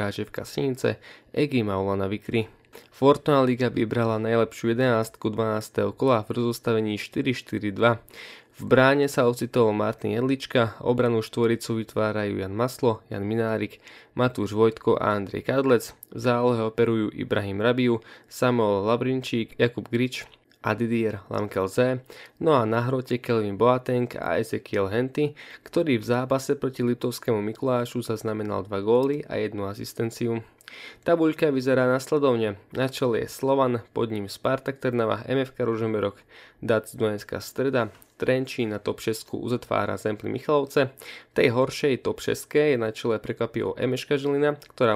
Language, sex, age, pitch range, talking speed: Slovak, male, 20-39, 110-130 Hz, 130 wpm